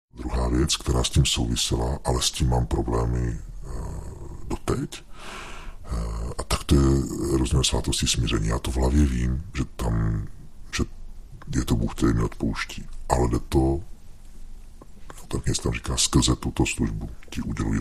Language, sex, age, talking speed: Czech, female, 50-69, 160 wpm